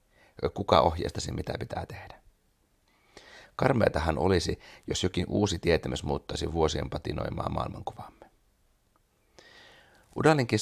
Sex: male